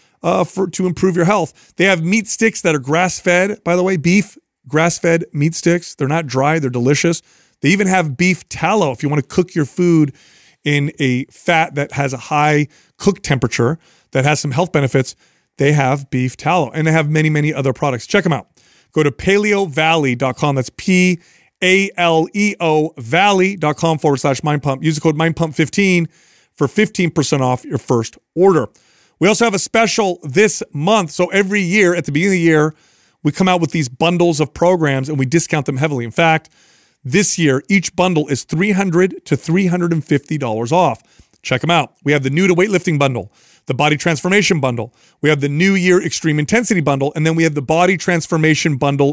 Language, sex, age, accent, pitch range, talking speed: English, male, 30-49, American, 140-180 Hz, 195 wpm